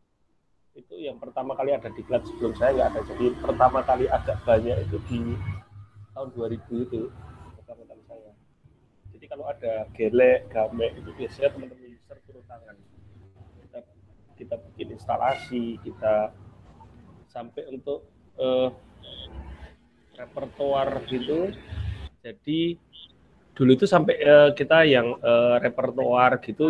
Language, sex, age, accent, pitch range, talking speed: Indonesian, male, 30-49, native, 110-140 Hz, 115 wpm